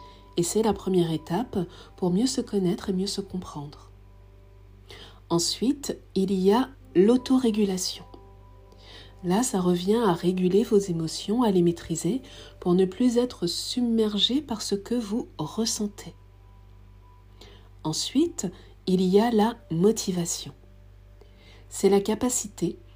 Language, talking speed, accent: French, 125 wpm, French